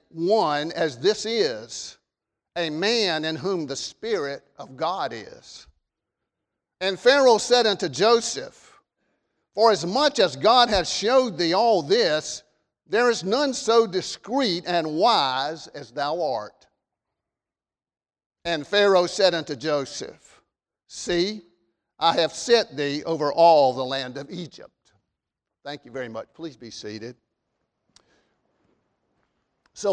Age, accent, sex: 50-69, American, male